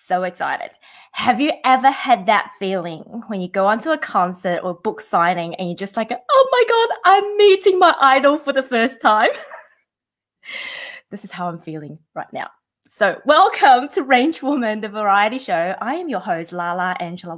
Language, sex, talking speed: English, female, 185 wpm